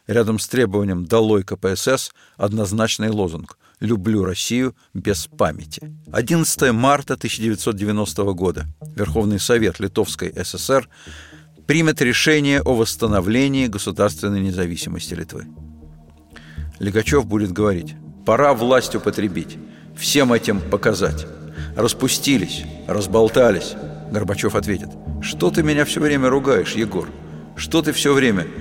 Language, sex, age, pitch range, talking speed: Russian, male, 50-69, 85-125 Hz, 105 wpm